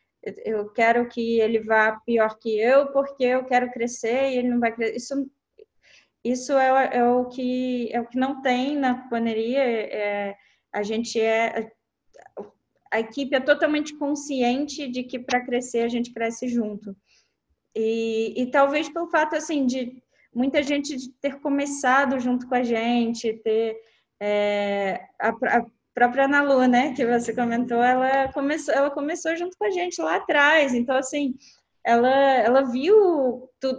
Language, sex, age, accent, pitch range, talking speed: Portuguese, female, 10-29, Brazilian, 230-275 Hz, 160 wpm